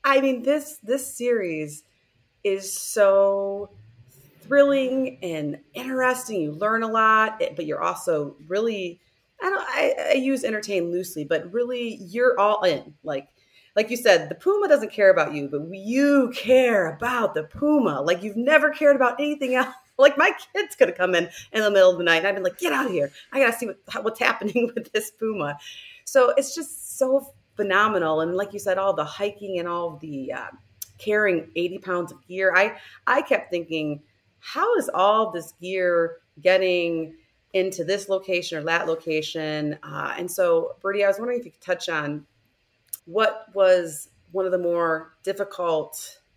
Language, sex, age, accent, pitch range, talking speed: English, female, 30-49, American, 165-250 Hz, 180 wpm